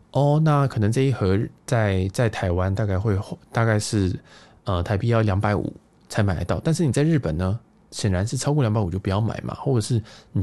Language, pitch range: Chinese, 100-135 Hz